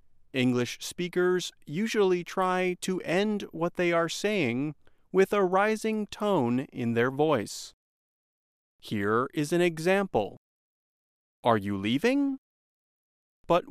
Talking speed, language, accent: 110 wpm, English, American